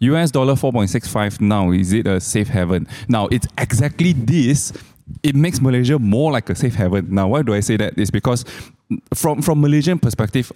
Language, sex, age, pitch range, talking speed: English, male, 20-39, 100-135 Hz, 190 wpm